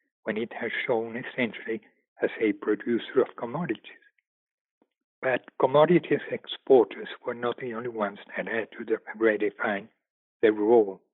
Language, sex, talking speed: English, male, 130 wpm